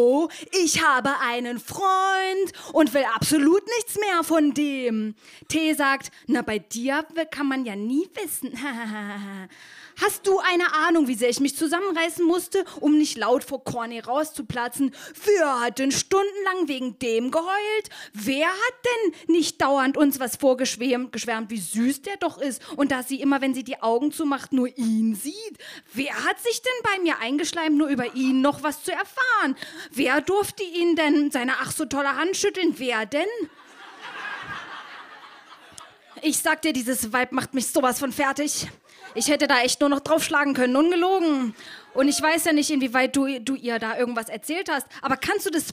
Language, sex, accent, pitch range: German, female, German, 260-340 Hz